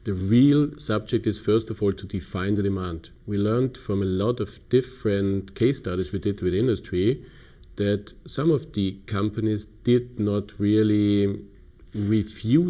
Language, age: English, 50-69